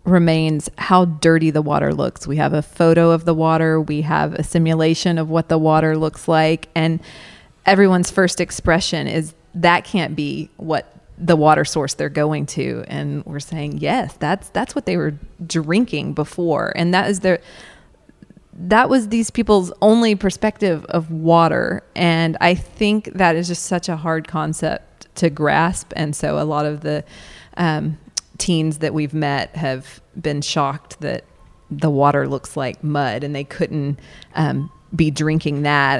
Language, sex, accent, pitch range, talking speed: English, female, American, 150-180 Hz, 165 wpm